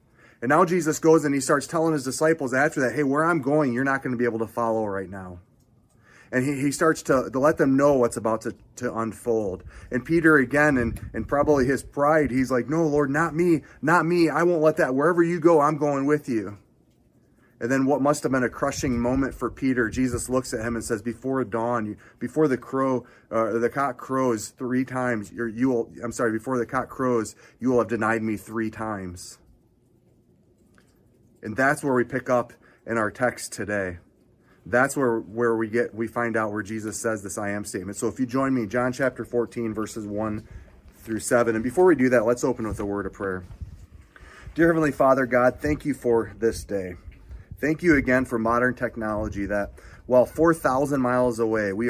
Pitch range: 110-140 Hz